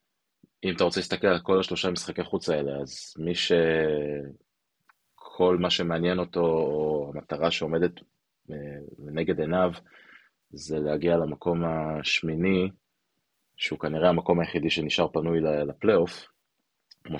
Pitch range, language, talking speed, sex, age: 75-90 Hz, Hebrew, 115 wpm, male, 20-39